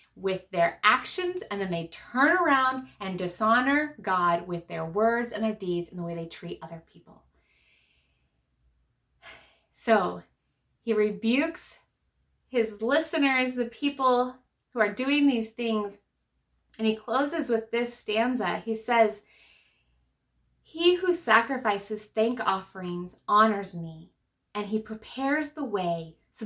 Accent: American